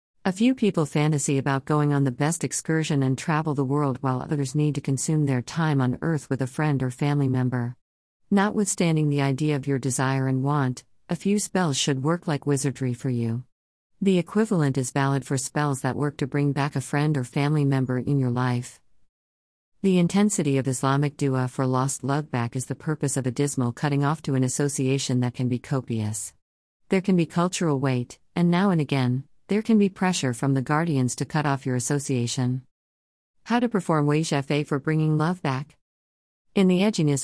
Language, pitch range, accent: English, 130-155 Hz, American